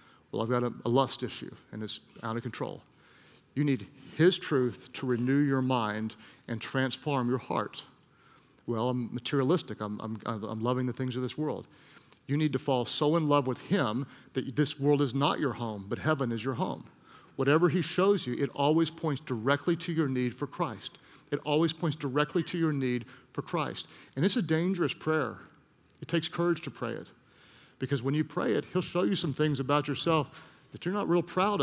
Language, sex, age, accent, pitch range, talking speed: English, male, 40-59, American, 135-190 Hz, 200 wpm